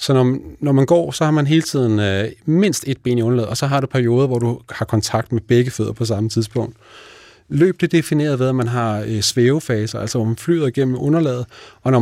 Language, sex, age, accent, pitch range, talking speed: Danish, male, 30-49, native, 110-140 Hz, 245 wpm